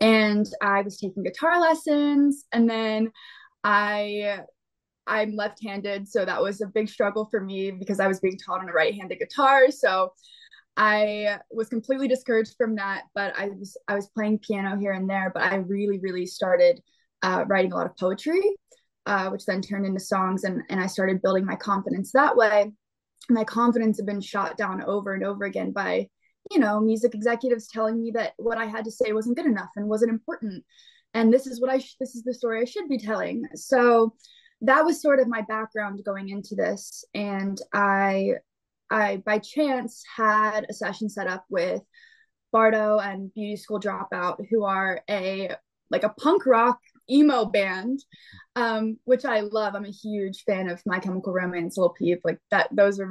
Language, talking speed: English, 190 wpm